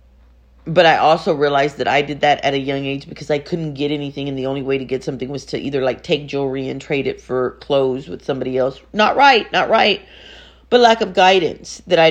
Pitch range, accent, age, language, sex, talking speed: 120-165 Hz, American, 40-59, English, female, 240 wpm